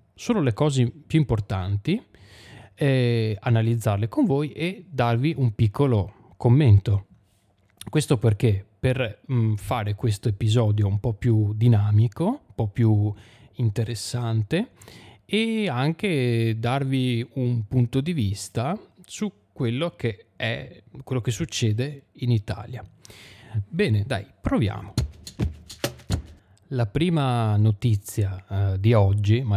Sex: male